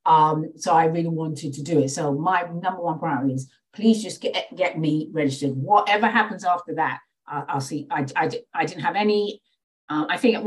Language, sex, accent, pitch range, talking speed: English, female, British, 135-180 Hz, 210 wpm